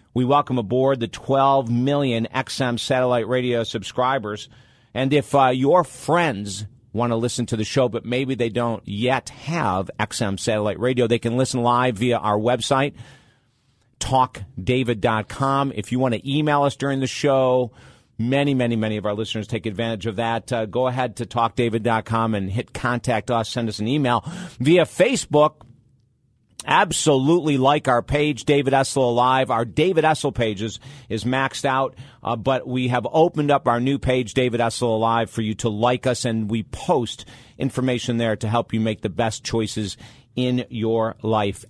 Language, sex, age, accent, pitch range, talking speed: English, male, 50-69, American, 115-135 Hz, 170 wpm